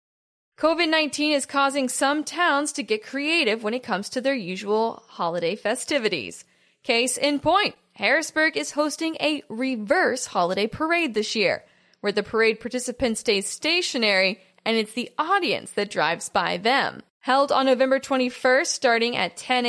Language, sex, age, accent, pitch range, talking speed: English, female, 10-29, American, 225-285 Hz, 150 wpm